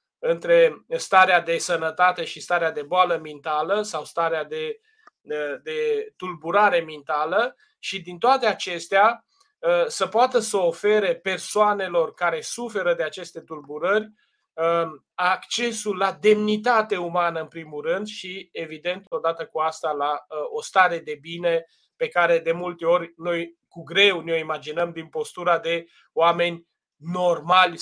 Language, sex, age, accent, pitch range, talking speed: Romanian, male, 20-39, native, 170-245 Hz, 130 wpm